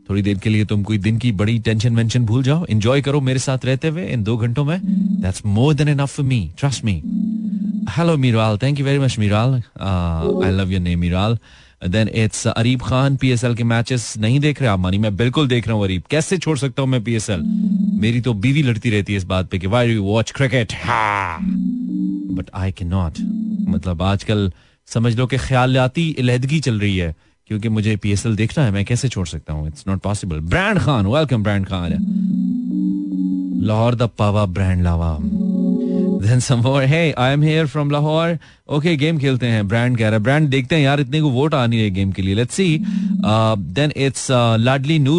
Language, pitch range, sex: Hindi, 105-150 Hz, male